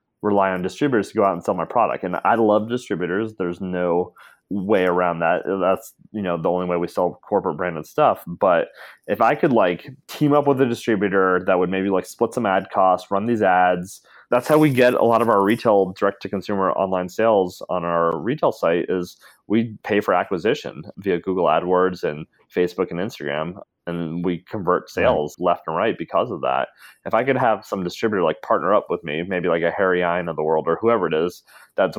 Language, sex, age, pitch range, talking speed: English, male, 30-49, 90-105 Hz, 215 wpm